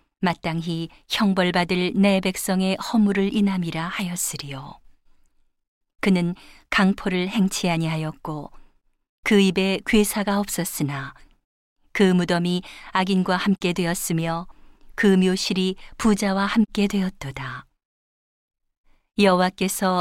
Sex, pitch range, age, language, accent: female, 170-200 Hz, 40-59, Korean, native